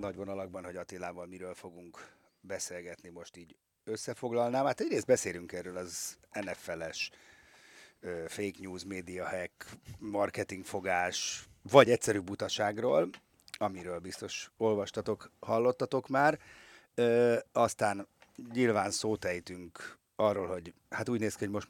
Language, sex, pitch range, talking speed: Hungarian, male, 95-115 Hz, 110 wpm